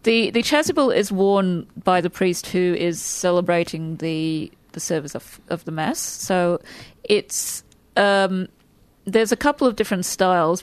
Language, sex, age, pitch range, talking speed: English, female, 30-49, 165-205 Hz, 150 wpm